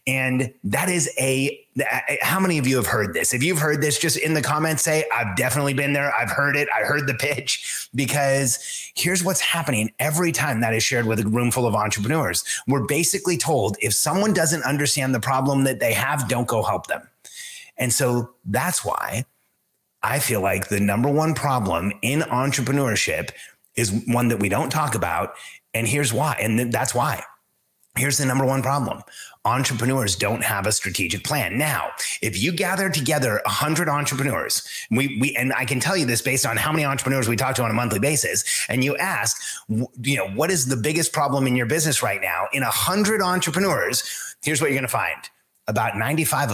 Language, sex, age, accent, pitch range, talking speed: English, male, 30-49, American, 115-150 Hz, 195 wpm